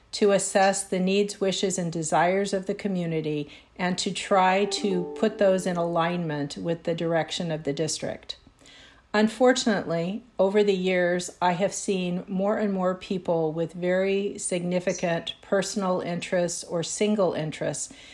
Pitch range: 170-200 Hz